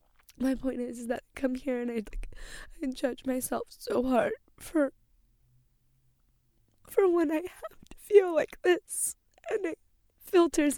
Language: English